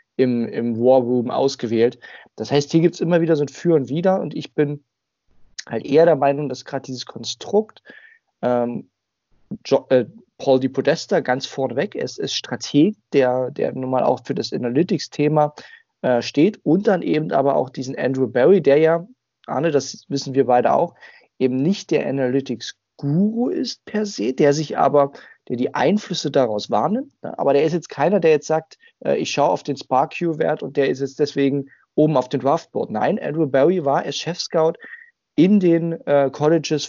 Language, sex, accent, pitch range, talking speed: German, male, German, 130-170 Hz, 185 wpm